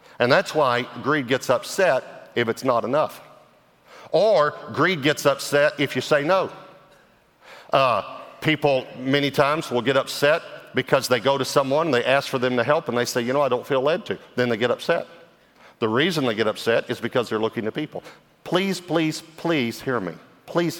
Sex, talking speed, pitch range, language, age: male, 195 wpm, 110-150 Hz, English, 50-69